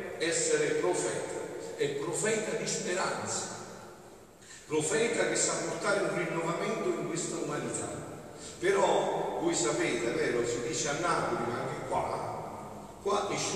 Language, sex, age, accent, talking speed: Italian, male, 50-69, native, 130 wpm